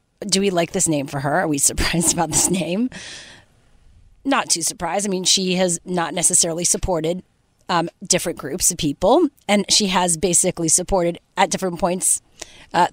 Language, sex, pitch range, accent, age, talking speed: English, female, 165-220 Hz, American, 30-49, 170 wpm